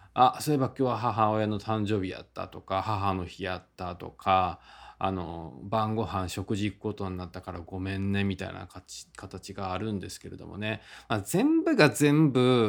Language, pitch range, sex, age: Japanese, 95-135 Hz, male, 20-39